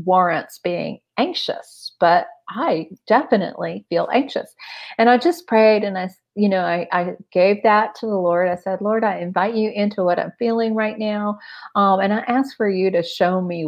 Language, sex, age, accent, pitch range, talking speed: English, female, 40-59, American, 180-220 Hz, 195 wpm